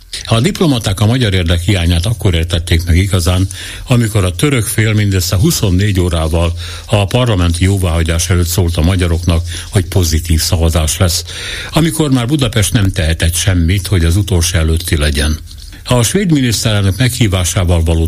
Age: 60-79